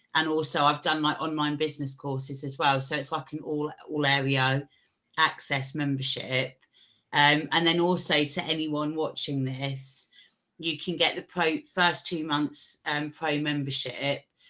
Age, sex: 30-49, female